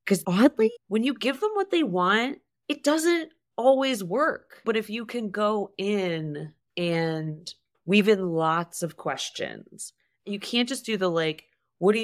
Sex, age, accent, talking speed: female, 30-49, American, 165 wpm